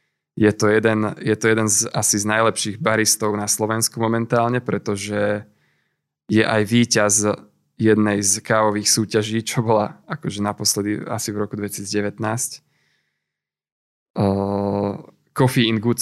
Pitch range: 105-125 Hz